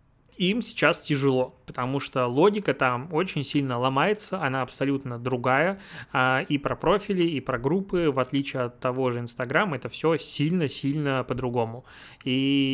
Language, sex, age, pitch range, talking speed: Russian, male, 20-39, 130-145 Hz, 140 wpm